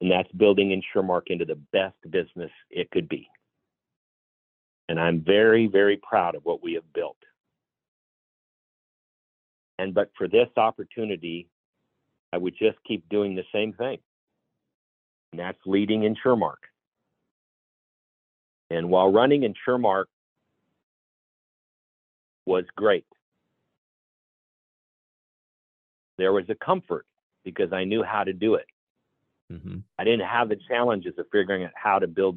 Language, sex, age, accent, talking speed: English, male, 50-69, American, 120 wpm